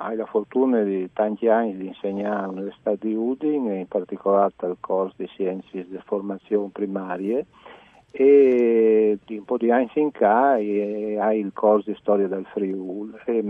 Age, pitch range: 50-69, 95-110 Hz